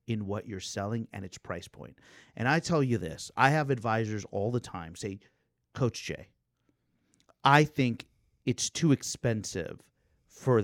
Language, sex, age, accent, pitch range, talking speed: English, male, 30-49, American, 110-165 Hz, 160 wpm